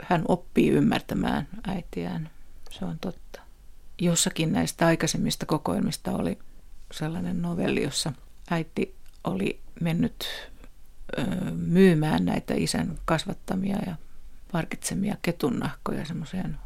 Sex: female